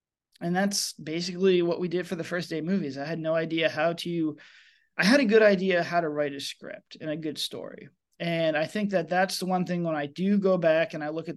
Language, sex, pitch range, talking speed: English, male, 160-195 Hz, 255 wpm